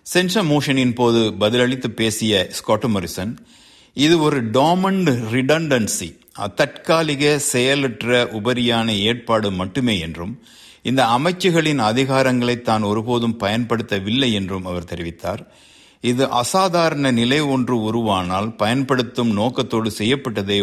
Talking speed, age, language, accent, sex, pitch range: 100 wpm, 60-79, Tamil, native, male, 105-135 Hz